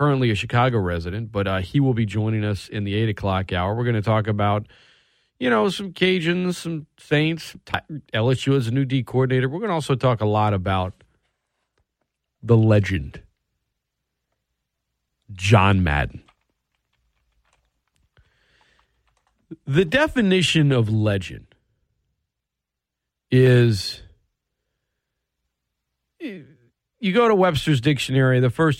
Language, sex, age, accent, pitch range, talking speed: English, male, 40-59, American, 105-150 Hz, 120 wpm